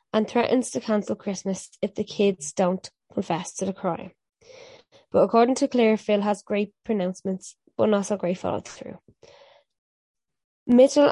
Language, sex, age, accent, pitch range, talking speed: English, female, 20-39, Irish, 195-230 Hz, 150 wpm